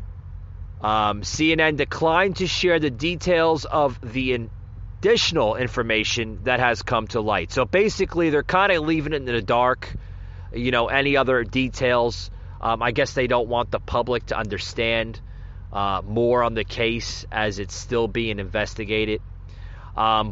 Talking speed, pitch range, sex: 155 wpm, 100-160 Hz, male